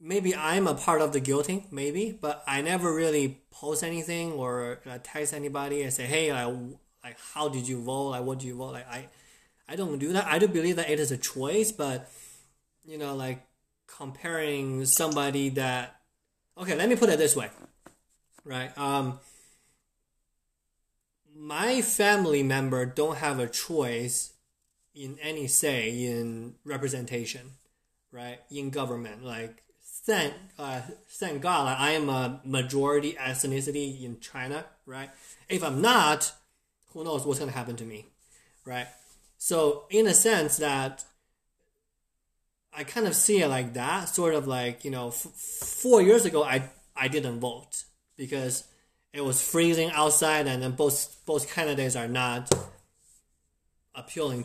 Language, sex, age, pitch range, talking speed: English, male, 20-39, 125-155 Hz, 155 wpm